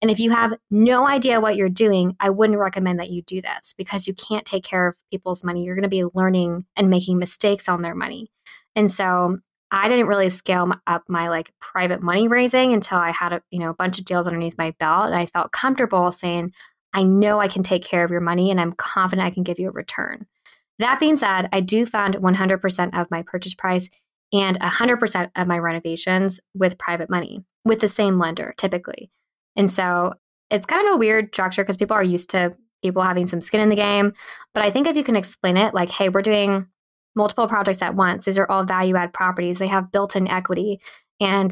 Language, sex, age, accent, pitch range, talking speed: English, female, 20-39, American, 180-210 Hz, 220 wpm